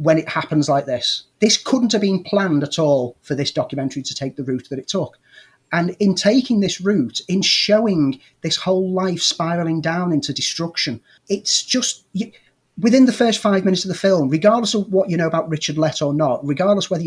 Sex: male